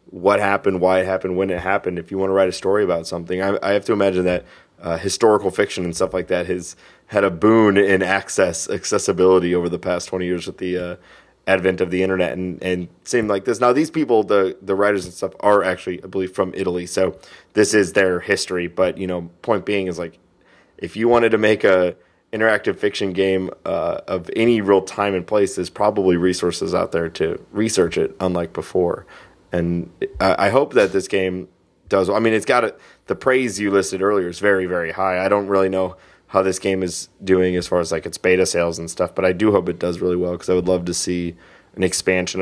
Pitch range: 90-100 Hz